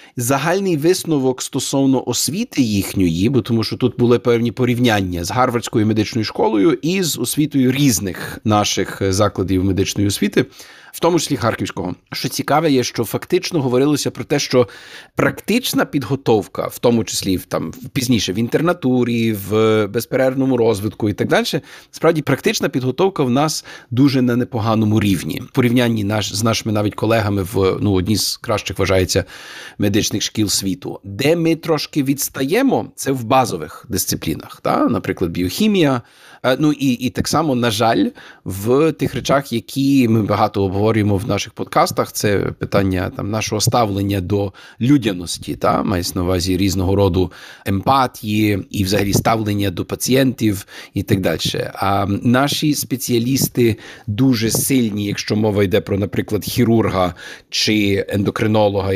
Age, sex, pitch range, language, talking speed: 40-59, male, 100-130 Hz, Ukrainian, 145 wpm